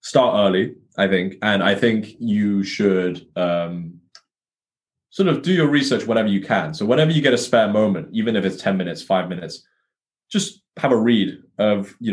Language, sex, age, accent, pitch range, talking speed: English, male, 20-39, British, 95-120 Hz, 190 wpm